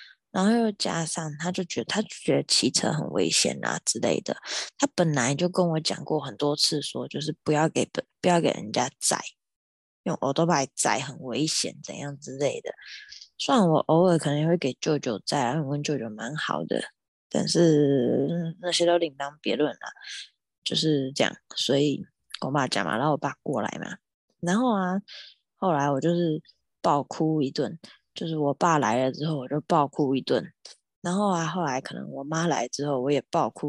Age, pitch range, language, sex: 20-39, 145-185 Hz, Chinese, female